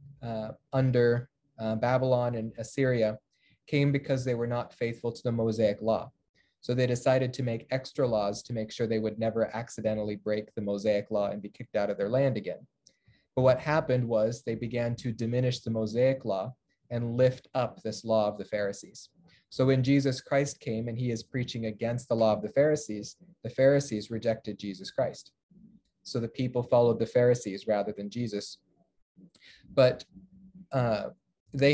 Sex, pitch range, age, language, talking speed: male, 110-130 Hz, 30-49, English, 175 wpm